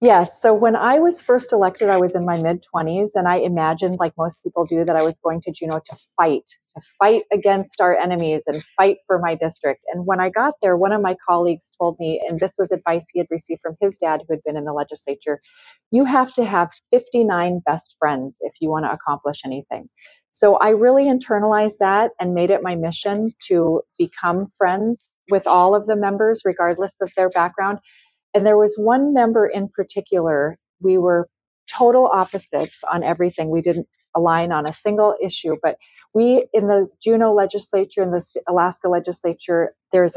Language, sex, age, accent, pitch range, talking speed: English, female, 30-49, American, 170-205 Hz, 195 wpm